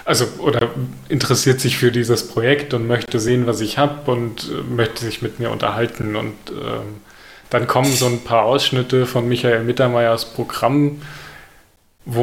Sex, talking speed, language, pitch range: male, 155 wpm, German, 115-130 Hz